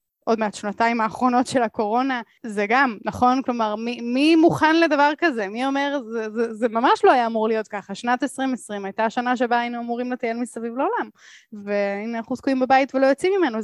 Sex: female